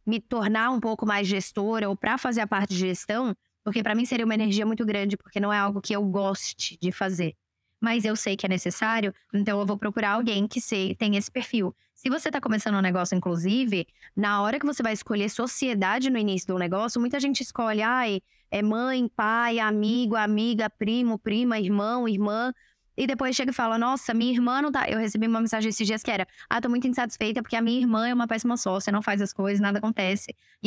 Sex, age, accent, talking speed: female, 10-29, Brazilian, 225 wpm